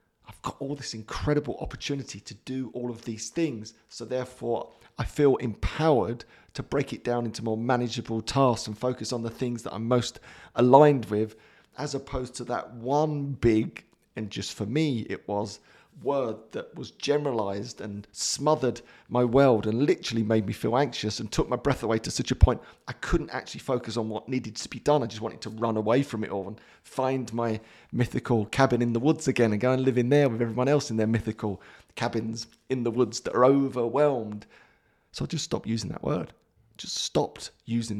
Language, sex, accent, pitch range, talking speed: English, male, British, 110-140 Hz, 200 wpm